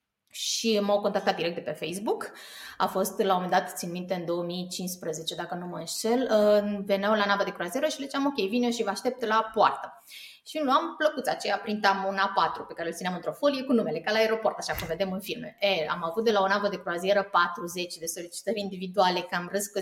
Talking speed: 230 wpm